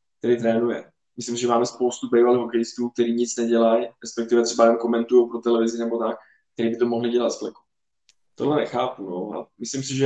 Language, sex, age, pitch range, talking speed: Czech, male, 20-39, 120-135 Hz, 185 wpm